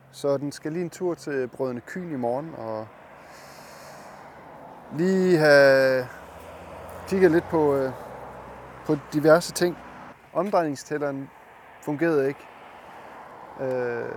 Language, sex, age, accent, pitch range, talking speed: Danish, male, 20-39, native, 125-160 Hz, 105 wpm